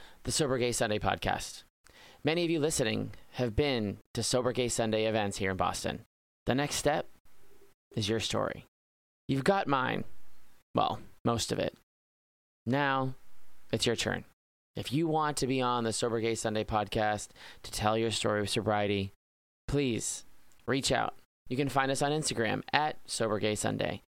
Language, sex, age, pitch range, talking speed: English, male, 20-39, 110-130 Hz, 160 wpm